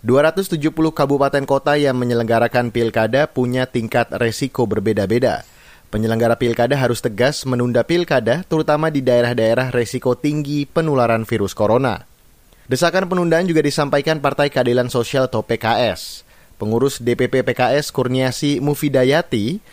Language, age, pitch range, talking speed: Indonesian, 30-49, 120-150 Hz, 115 wpm